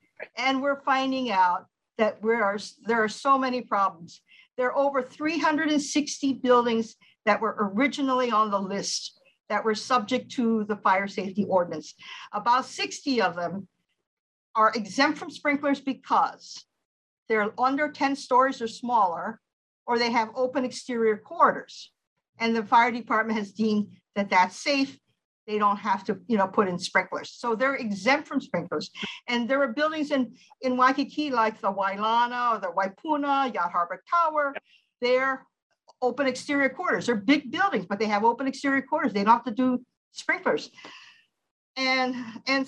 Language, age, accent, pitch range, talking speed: English, 50-69, American, 215-275 Hz, 155 wpm